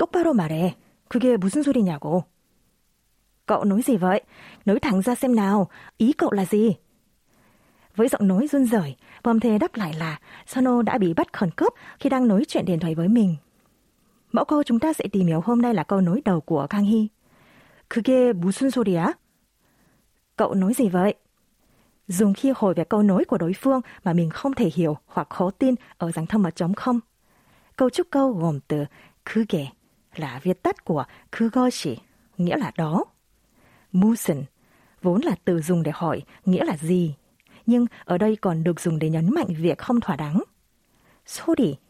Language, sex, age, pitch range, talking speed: Vietnamese, female, 20-39, 175-240 Hz, 175 wpm